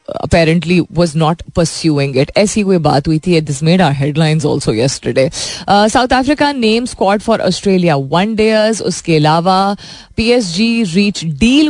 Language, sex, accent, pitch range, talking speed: Hindi, female, native, 155-225 Hz, 150 wpm